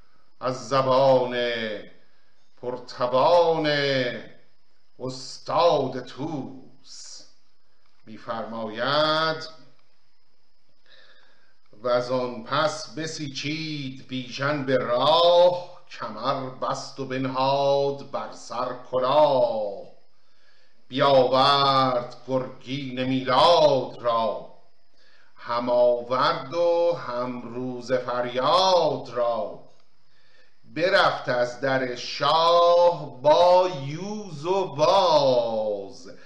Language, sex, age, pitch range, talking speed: Persian, male, 50-69, 125-155 Hz, 60 wpm